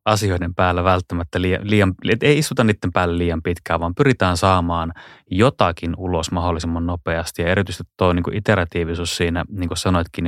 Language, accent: Finnish, native